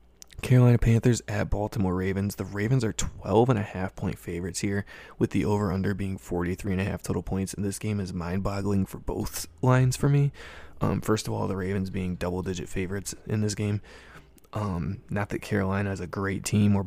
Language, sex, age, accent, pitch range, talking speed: English, male, 20-39, American, 95-105 Hz, 175 wpm